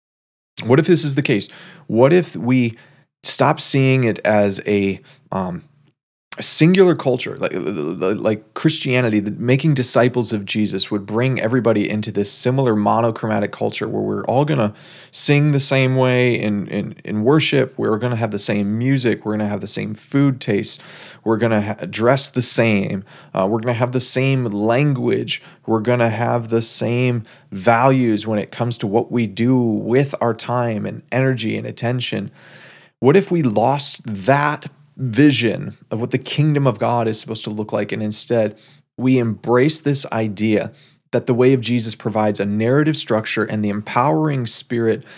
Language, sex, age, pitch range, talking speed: English, male, 30-49, 110-135 Hz, 175 wpm